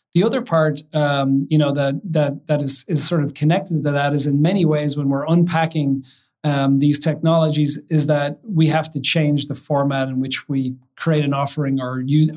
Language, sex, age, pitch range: English, male, 30-49, 140-155 Hz